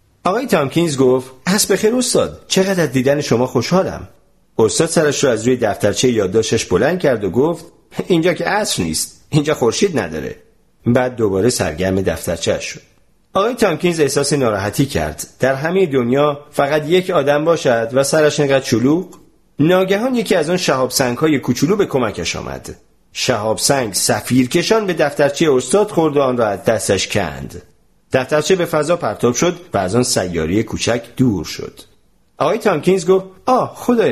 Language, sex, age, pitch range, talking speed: Persian, male, 40-59, 115-180 Hz, 155 wpm